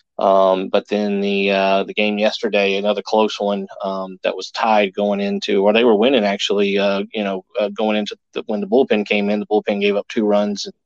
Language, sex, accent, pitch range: English, male, American, 100-105 Hz